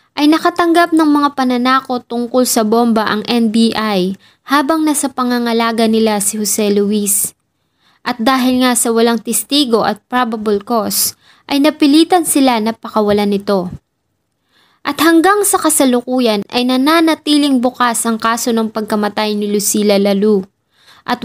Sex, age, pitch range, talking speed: female, 20-39, 210-260 Hz, 135 wpm